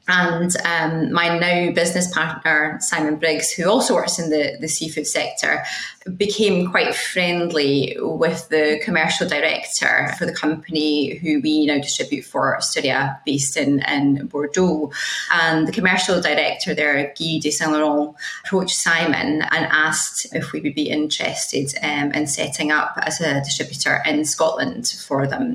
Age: 20-39